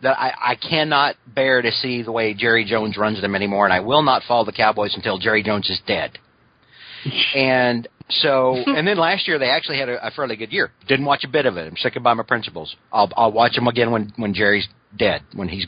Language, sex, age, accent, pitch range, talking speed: English, male, 40-59, American, 115-160 Hz, 235 wpm